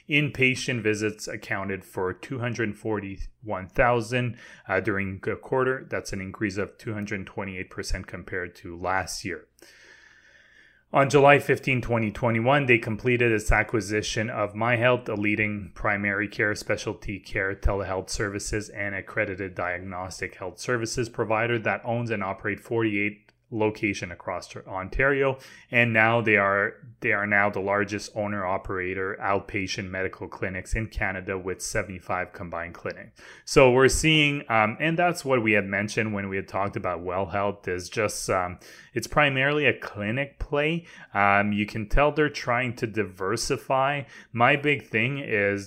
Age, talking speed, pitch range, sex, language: 20-39, 140 wpm, 100-120 Hz, male, English